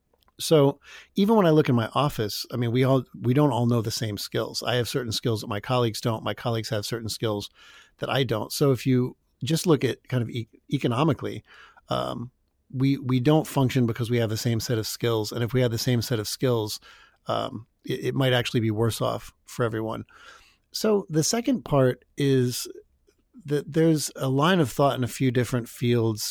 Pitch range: 115-135 Hz